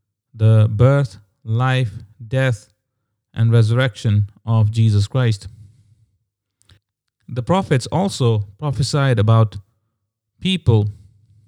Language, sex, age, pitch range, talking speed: English, male, 30-49, 105-125 Hz, 80 wpm